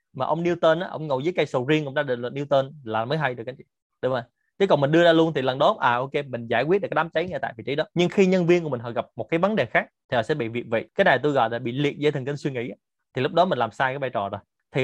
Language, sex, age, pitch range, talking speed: Vietnamese, male, 20-39, 125-170 Hz, 345 wpm